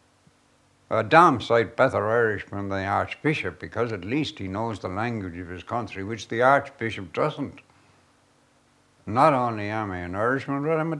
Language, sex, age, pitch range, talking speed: English, male, 60-79, 95-135 Hz, 170 wpm